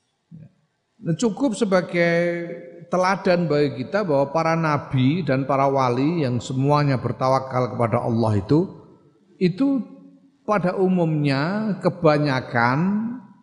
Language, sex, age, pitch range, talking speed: Indonesian, male, 50-69, 130-180 Hz, 95 wpm